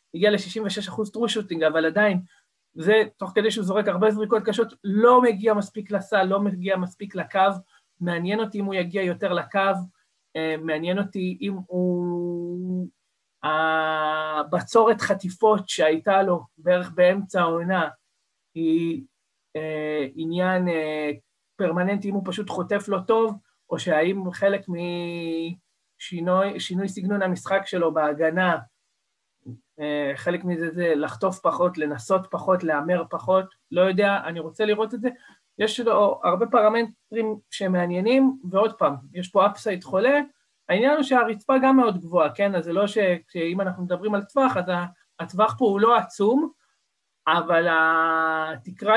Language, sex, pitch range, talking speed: Hebrew, male, 175-215 Hz, 130 wpm